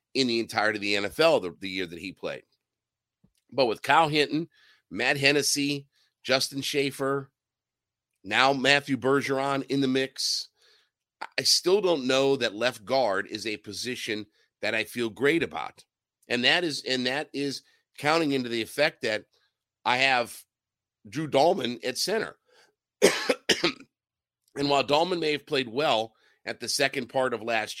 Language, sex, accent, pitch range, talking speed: English, male, American, 115-140 Hz, 155 wpm